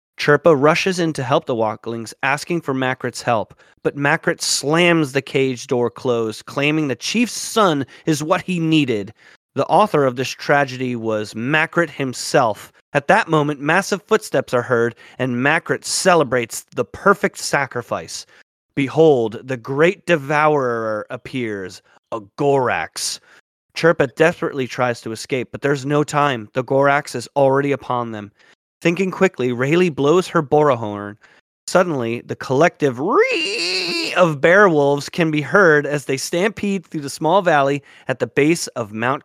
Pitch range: 120-160 Hz